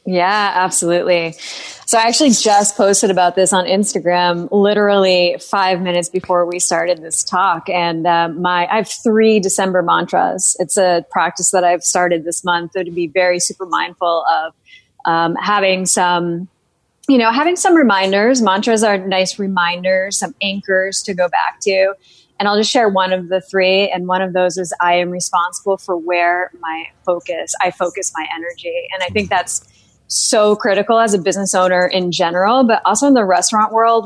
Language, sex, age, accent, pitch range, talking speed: English, female, 30-49, American, 175-205 Hz, 180 wpm